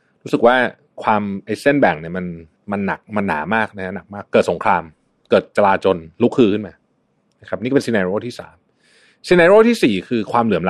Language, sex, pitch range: Thai, male, 105-155 Hz